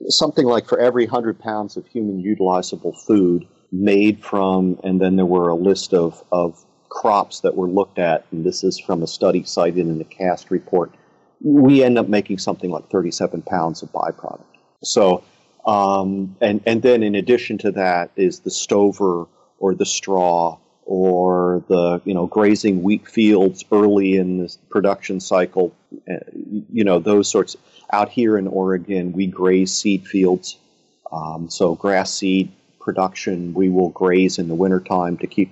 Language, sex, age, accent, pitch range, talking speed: English, male, 40-59, American, 90-105 Hz, 165 wpm